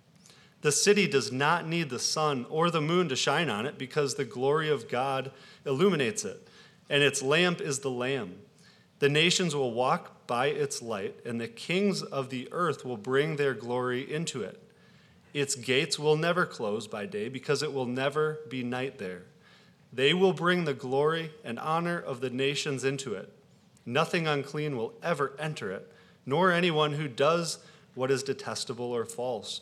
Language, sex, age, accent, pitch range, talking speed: English, male, 30-49, American, 130-165 Hz, 175 wpm